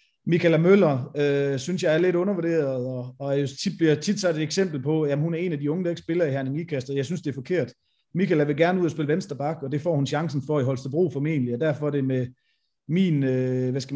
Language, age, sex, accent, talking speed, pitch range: Danish, 30-49, male, native, 260 wpm, 135-170 Hz